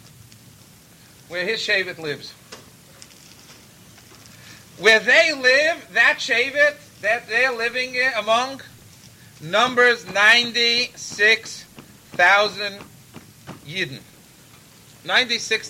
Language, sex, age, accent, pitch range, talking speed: English, male, 40-59, American, 165-235 Hz, 70 wpm